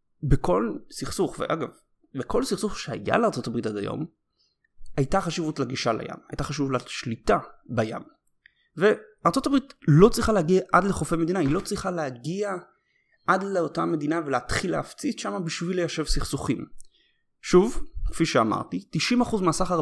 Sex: male